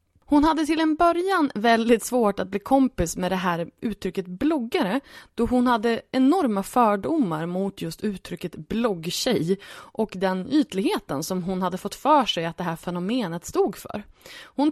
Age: 20-39